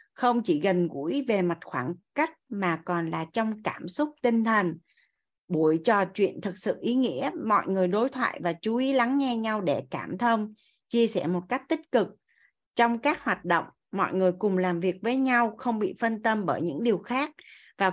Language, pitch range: Vietnamese, 180-240 Hz